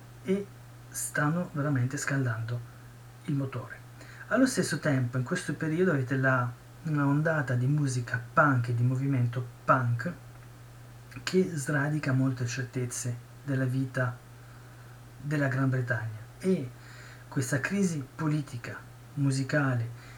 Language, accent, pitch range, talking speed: Italian, native, 125-145 Hz, 105 wpm